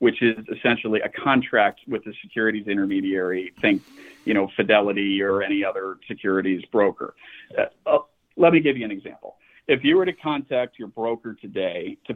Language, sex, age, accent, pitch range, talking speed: English, male, 50-69, American, 110-160 Hz, 175 wpm